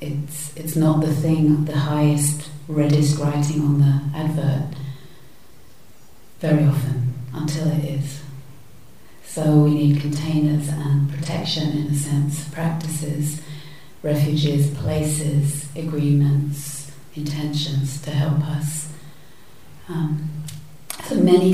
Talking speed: 105 wpm